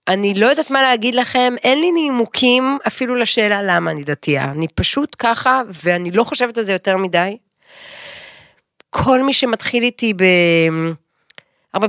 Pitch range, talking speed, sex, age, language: 175-250 Hz, 150 wpm, female, 30-49, Hebrew